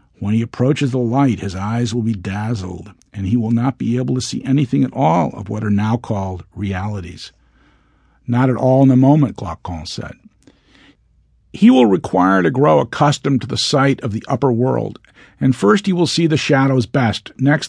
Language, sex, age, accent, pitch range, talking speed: English, male, 50-69, American, 115-145 Hz, 195 wpm